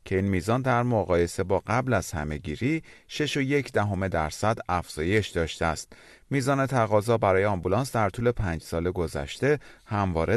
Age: 30-49